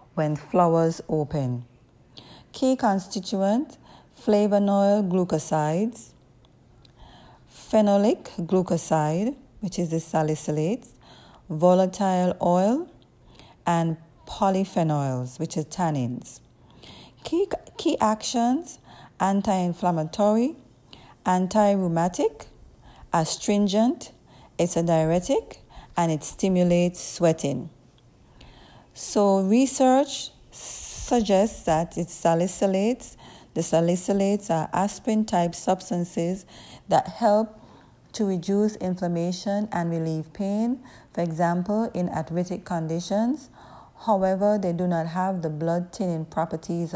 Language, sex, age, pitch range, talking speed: English, female, 30-49, 160-205 Hz, 85 wpm